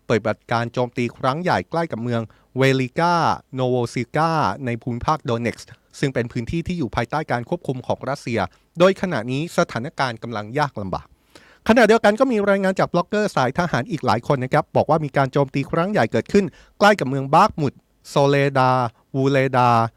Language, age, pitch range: Thai, 20-39, 120-165 Hz